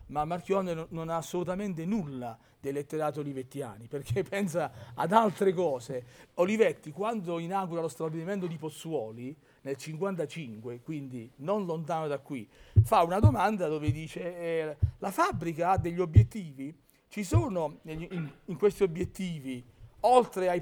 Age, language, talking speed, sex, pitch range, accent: 40-59, Italian, 135 wpm, male, 135-180 Hz, native